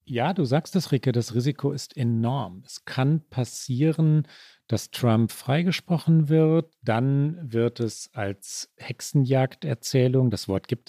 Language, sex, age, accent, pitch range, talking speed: German, male, 40-59, German, 110-135 Hz, 130 wpm